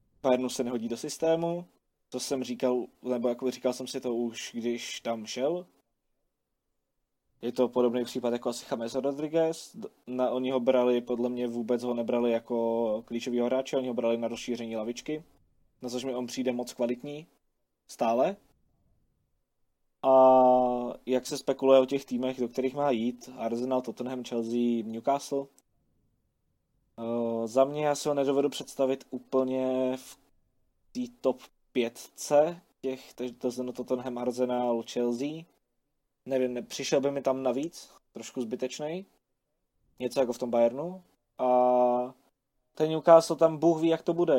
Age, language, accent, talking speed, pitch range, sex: 20-39, Czech, native, 140 wpm, 120-140 Hz, male